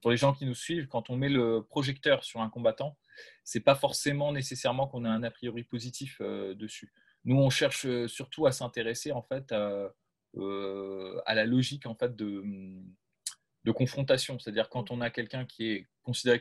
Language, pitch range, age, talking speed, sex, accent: French, 105-130 Hz, 20-39, 195 wpm, male, French